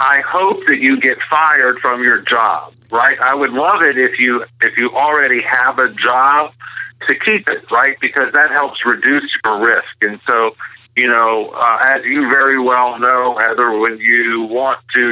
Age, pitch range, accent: 50-69, 115-135 Hz, American